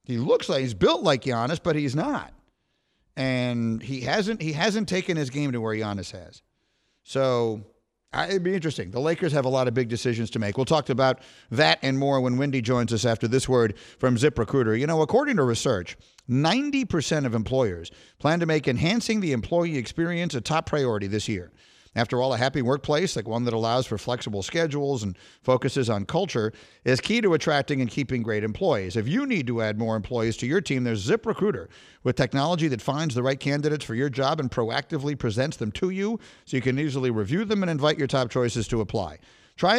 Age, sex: 50-69, male